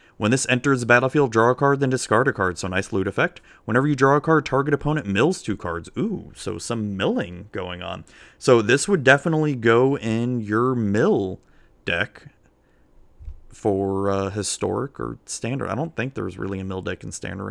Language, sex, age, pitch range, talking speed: English, male, 30-49, 95-125 Hz, 190 wpm